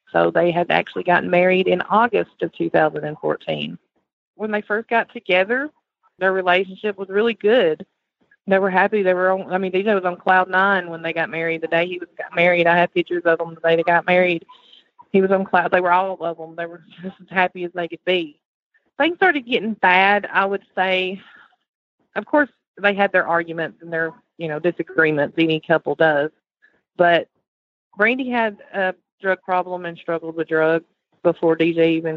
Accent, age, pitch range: American, 30-49, 170-210 Hz